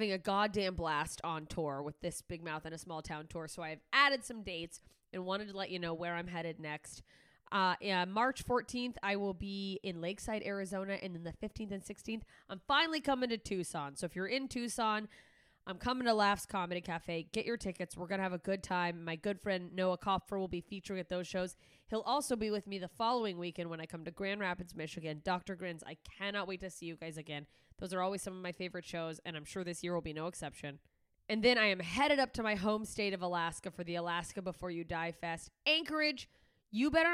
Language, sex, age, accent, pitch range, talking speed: English, female, 20-39, American, 175-215 Hz, 235 wpm